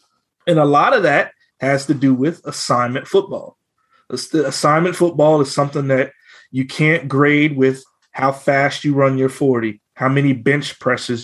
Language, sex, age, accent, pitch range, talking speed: English, male, 30-49, American, 130-170 Hz, 160 wpm